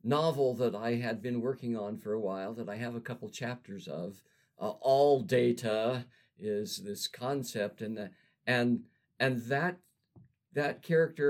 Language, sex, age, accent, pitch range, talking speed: English, male, 50-69, American, 120-150 Hz, 160 wpm